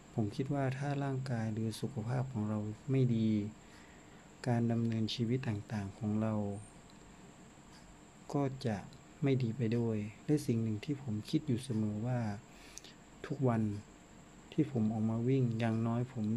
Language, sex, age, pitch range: Thai, male, 60-79, 110-125 Hz